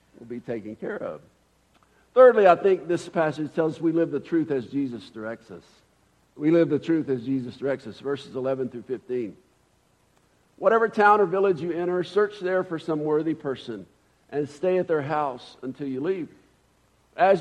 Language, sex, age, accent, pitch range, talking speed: English, male, 50-69, American, 130-175 Hz, 185 wpm